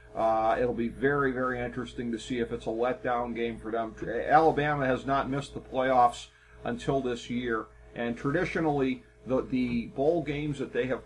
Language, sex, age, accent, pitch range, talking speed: English, male, 40-59, American, 115-135 Hz, 180 wpm